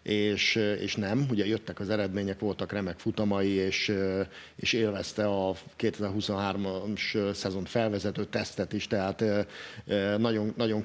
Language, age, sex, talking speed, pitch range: Hungarian, 50-69, male, 120 wpm, 100-115 Hz